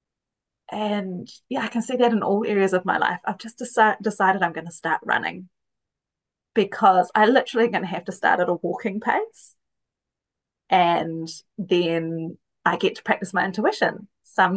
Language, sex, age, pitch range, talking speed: English, female, 20-39, 185-235 Hz, 170 wpm